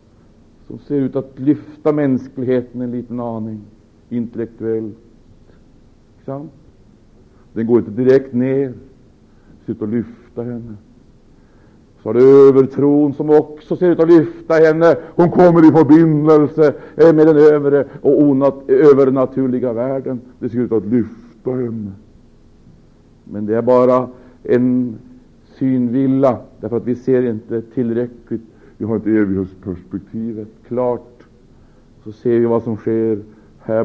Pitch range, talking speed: 110-150 Hz, 130 wpm